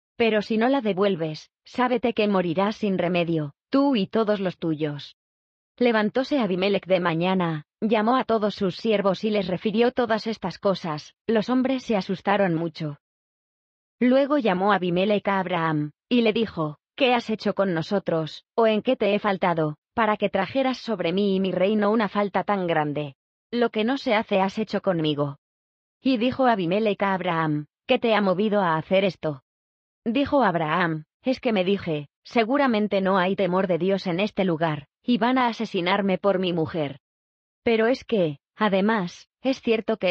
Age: 20-39